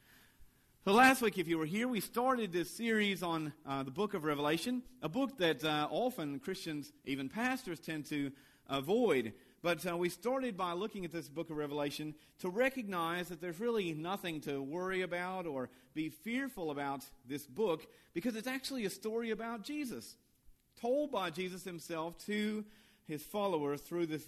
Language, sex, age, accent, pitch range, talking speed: English, male, 40-59, American, 150-210 Hz, 175 wpm